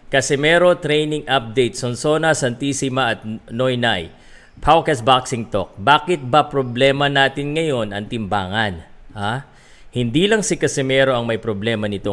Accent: native